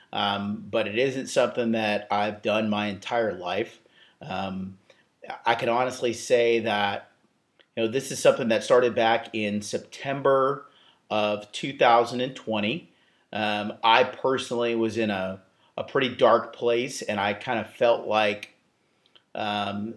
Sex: male